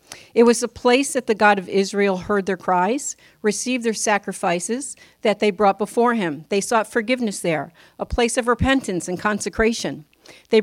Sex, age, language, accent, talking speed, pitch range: female, 50-69, English, American, 175 wpm, 195-240 Hz